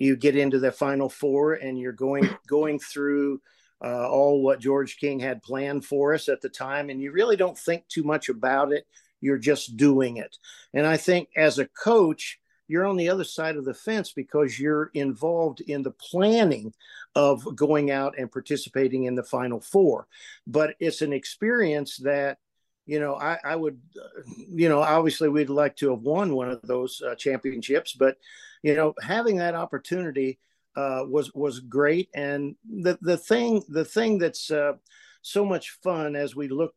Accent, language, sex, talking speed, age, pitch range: American, English, male, 185 wpm, 50-69, 135-175 Hz